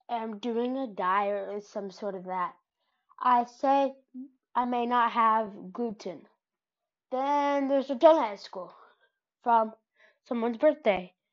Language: English